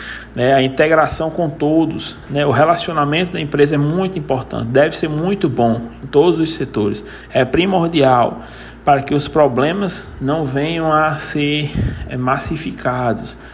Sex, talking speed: male, 135 wpm